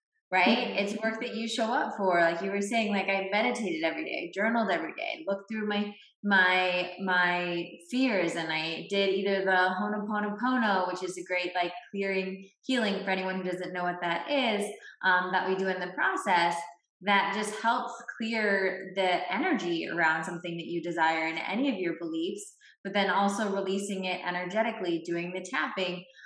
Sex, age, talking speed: female, 20-39, 185 wpm